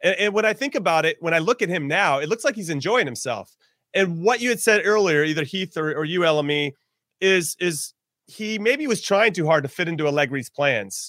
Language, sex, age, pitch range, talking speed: English, male, 30-49, 145-190 Hz, 235 wpm